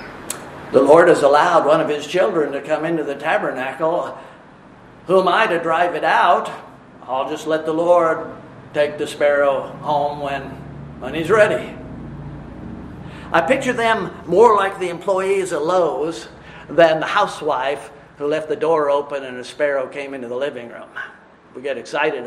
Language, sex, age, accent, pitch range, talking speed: English, male, 50-69, American, 150-220 Hz, 165 wpm